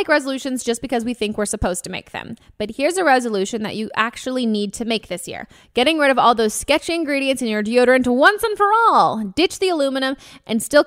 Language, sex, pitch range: English, female, 205-270 Hz